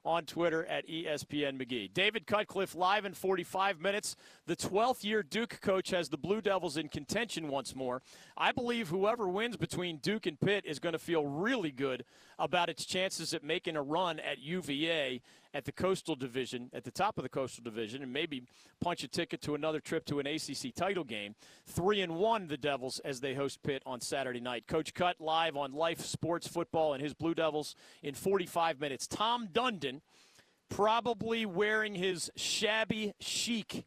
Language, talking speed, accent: English, 185 wpm, American